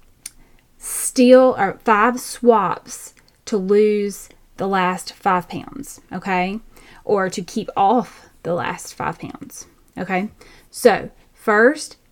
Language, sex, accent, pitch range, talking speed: English, female, American, 180-240 Hz, 110 wpm